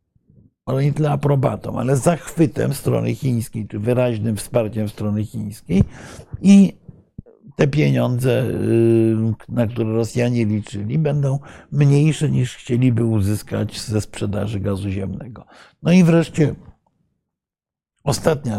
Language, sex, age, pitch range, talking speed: Polish, male, 60-79, 110-140 Hz, 105 wpm